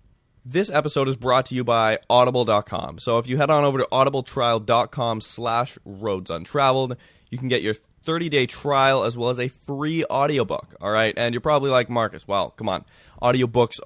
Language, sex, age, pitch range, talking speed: English, male, 20-39, 100-130 Hz, 180 wpm